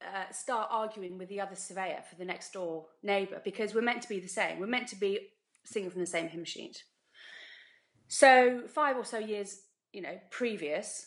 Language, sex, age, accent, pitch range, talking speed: English, female, 30-49, British, 185-235 Hz, 200 wpm